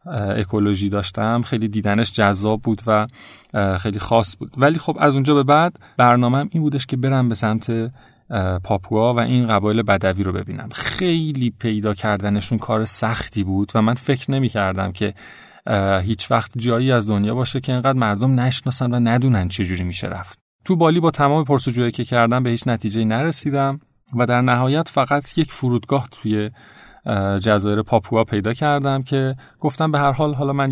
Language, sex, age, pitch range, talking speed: Persian, male, 30-49, 105-135 Hz, 170 wpm